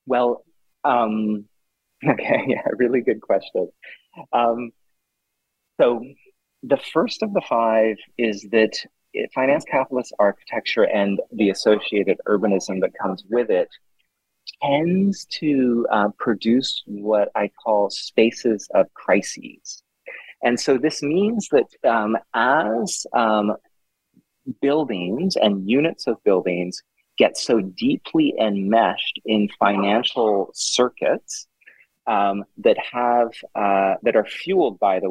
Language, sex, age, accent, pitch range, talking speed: English, male, 30-49, American, 100-125 Hz, 115 wpm